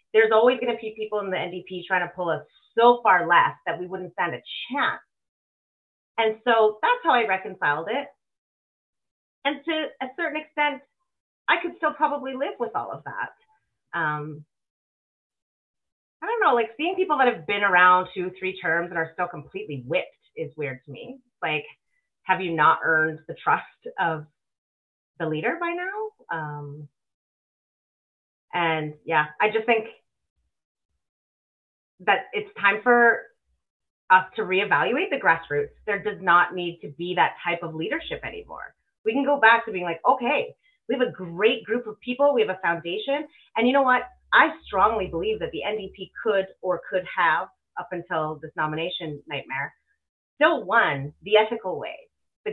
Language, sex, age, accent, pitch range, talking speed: English, female, 30-49, American, 170-275 Hz, 170 wpm